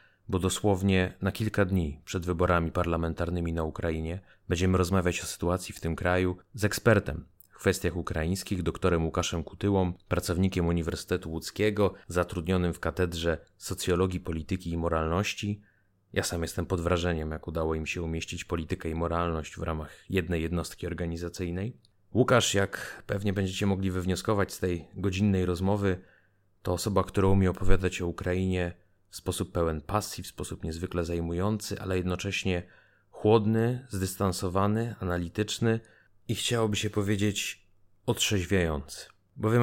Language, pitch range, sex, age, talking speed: Polish, 85-100 Hz, male, 30-49, 135 wpm